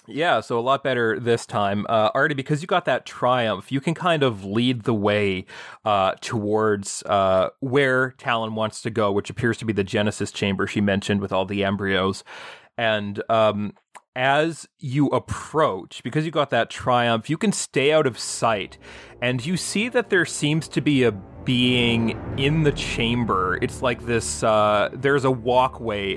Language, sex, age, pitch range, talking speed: English, male, 30-49, 100-130 Hz, 180 wpm